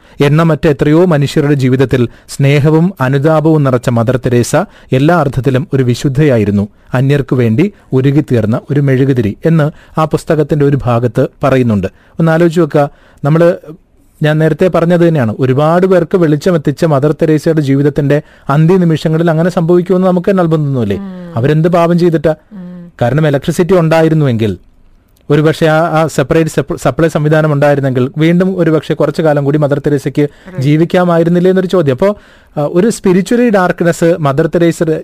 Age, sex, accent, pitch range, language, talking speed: 30-49, male, native, 135-165 Hz, Malayalam, 125 wpm